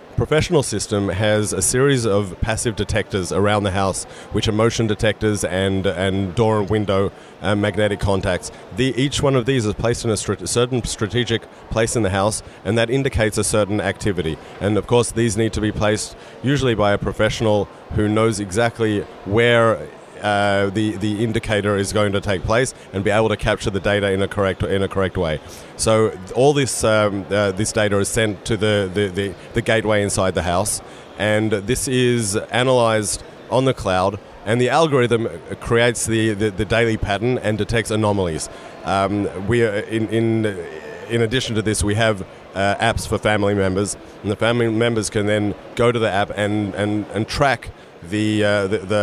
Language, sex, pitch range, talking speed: English, male, 100-115 Hz, 190 wpm